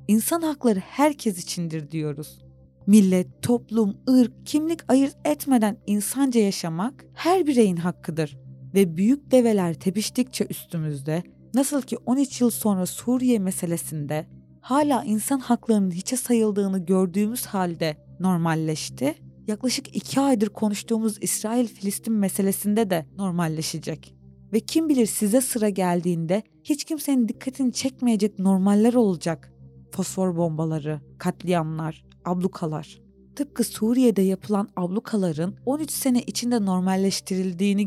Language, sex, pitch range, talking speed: Turkish, female, 170-240 Hz, 110 wpm